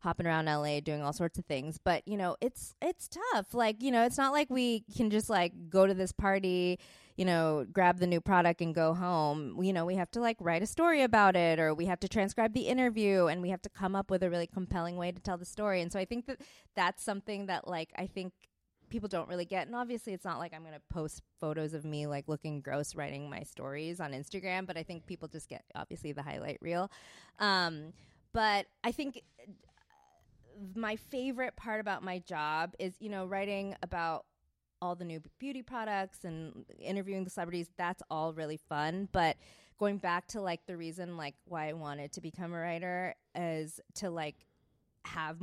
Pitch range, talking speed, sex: 160-195 Hz, 215 wpm, female